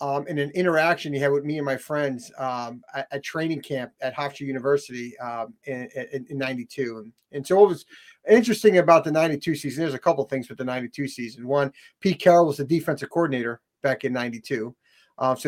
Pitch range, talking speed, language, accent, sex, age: 135-160 Hz, 205 wpm, English, American, male, 40-59